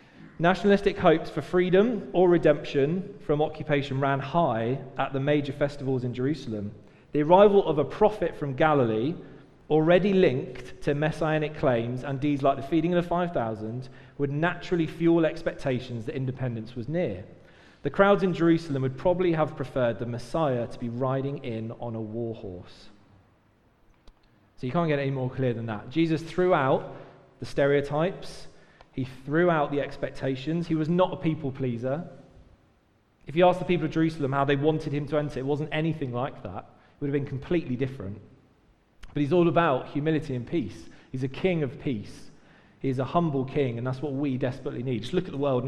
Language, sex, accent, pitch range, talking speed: English, male, British, 125-160 Hz, 180 wpm